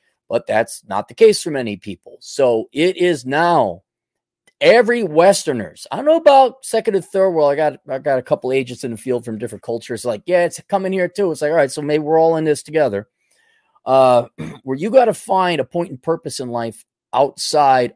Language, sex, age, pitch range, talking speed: English, male, 30-49, 115-190 Hz, 215 wpm